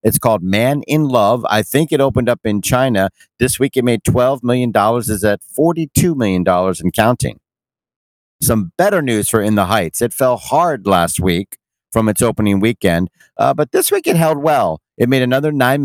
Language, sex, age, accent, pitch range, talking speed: English, male, 50-69, American, 105-130 Hz, 195 wpm